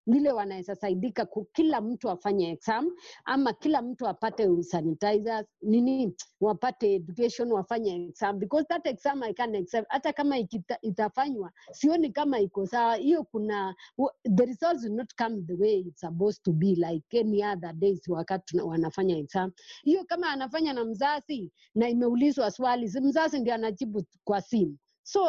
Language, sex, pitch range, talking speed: English, female, 195-275 Hz, 150 wpm